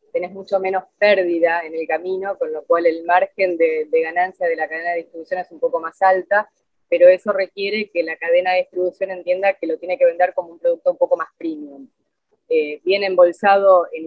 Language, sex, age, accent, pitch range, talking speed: Spanish, female, 20-39, Argentinian, 180-265 Hz, 215 wpm